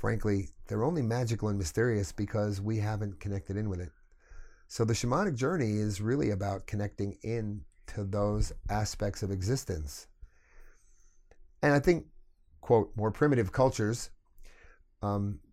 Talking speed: 135 wpm